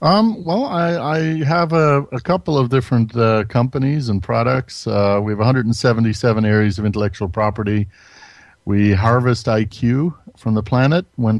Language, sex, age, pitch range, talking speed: English, male, 50-69, 105-130 Hz, 155 wpm